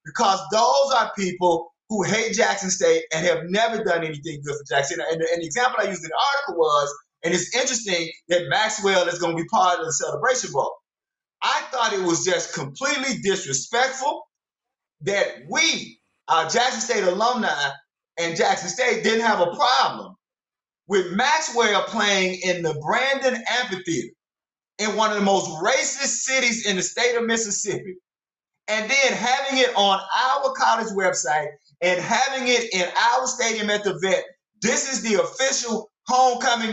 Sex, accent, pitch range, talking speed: male, American, 180-255 Hz, 165 wpm